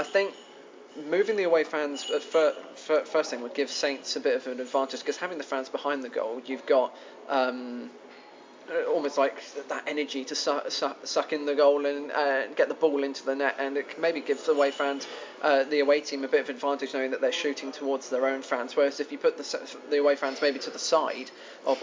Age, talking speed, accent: 20-39, 230 wpm, British